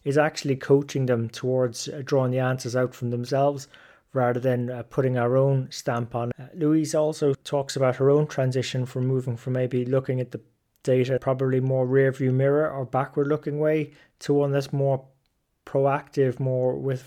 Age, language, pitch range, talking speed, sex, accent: 20-39, English, 125-140 Hz, 175 wpm, male, British